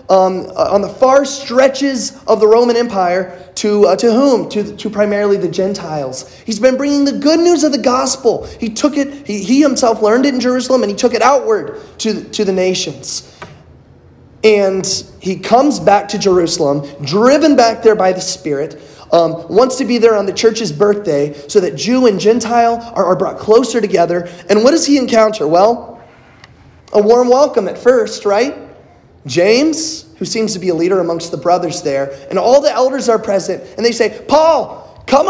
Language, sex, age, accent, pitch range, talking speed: English, male, 20-39, American, 180-255 Hz, 195 wpm